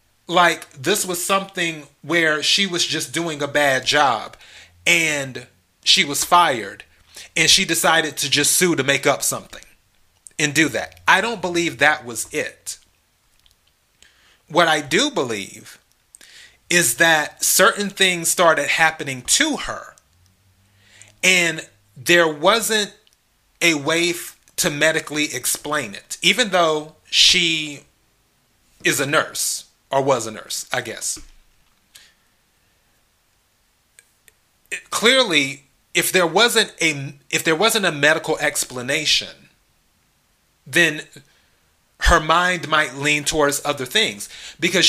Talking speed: 120 wpm